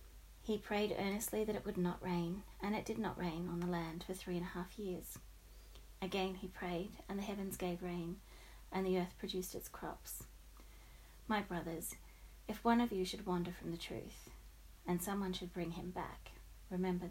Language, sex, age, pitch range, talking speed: English, female, 30-49, 170-195 Hz, 190 wpm